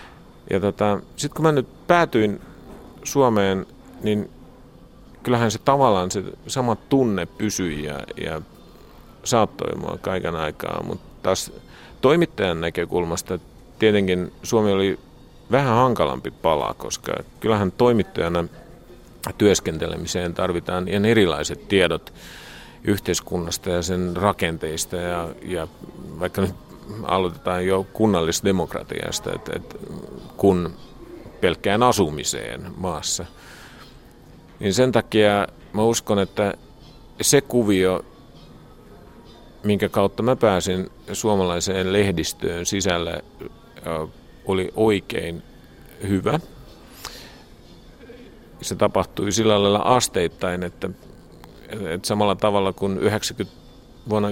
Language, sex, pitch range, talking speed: Finnish, male, 90-105 Hz, 90 wpm